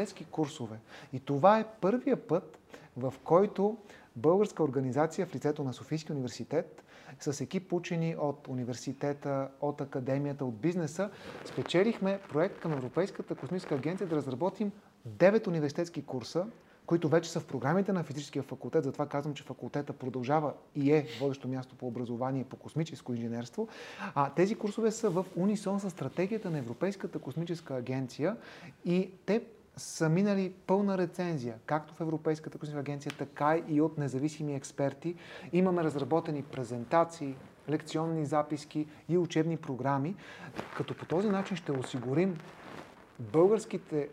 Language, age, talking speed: Bulgarian, 30-49, 135 wpm